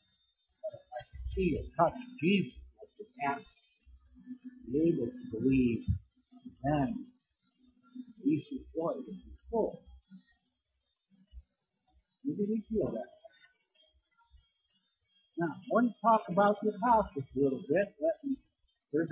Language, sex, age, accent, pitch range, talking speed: English, male, 60-79, American, 165-245 Hz, 110 wpm